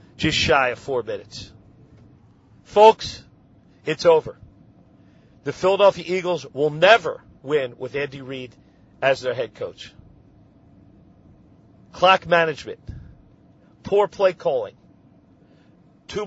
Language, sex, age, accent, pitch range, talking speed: English, male, 50-69, American, 140-190 Hz, 100 wpm